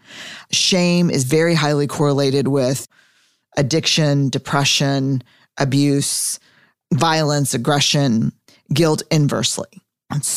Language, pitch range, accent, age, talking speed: English, 135-155 Hz, American, 40-59, 80 wpm